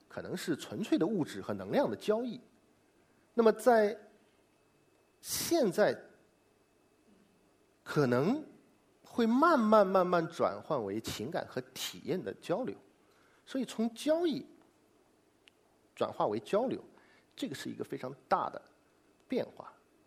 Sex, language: male, Chinese